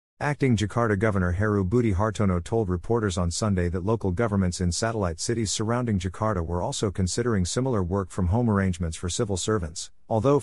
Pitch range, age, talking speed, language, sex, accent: 90-115 Hz, 50-69, 175 wpm, English, male, American